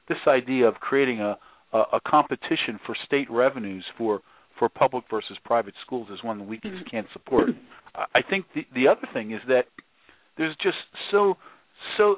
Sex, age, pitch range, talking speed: male, 50-69, 125-175 Hz, 170 wpm